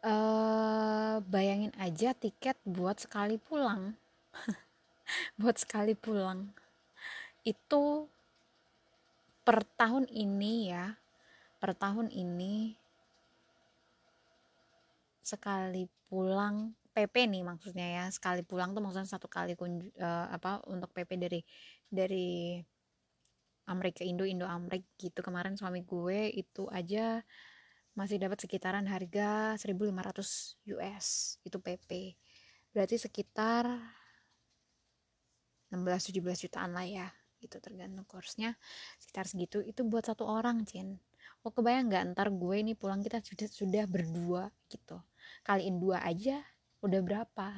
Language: Indonesian